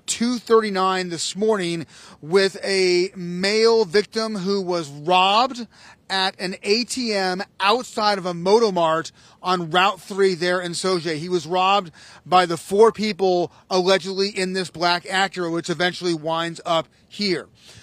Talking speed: 130 wpm